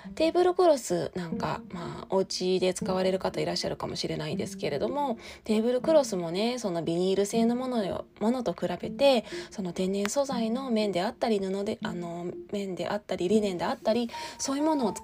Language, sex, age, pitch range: Japanese, female, 20-39, 180-245 Hz